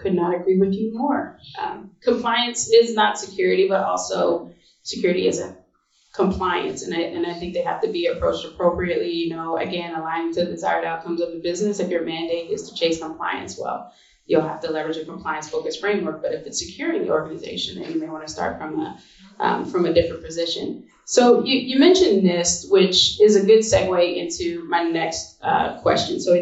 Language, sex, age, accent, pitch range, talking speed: English, female, 20-39, American, 165-210 Hz, 200 wpm